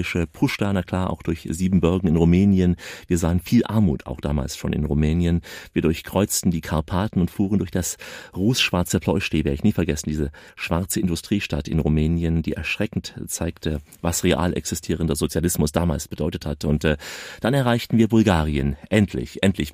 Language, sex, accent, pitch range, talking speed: German, male, German, 80-100 Hz, 165 wpm